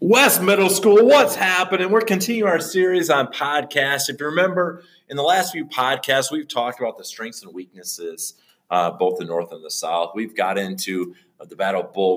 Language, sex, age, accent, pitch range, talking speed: English, male, 30-49, American, 120-195 Hz, 200 wpm